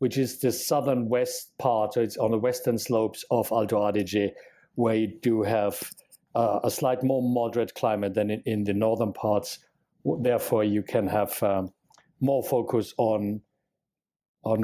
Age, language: 50-69, English